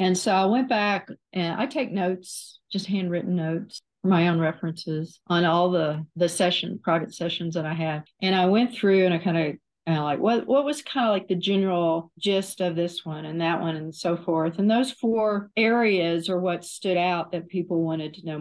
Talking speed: 215 wpm